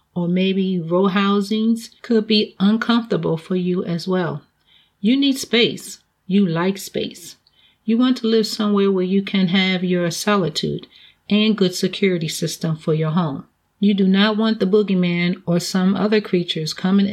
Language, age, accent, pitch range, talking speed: English, 40-59, American, 175-215 Hz, 160 wpm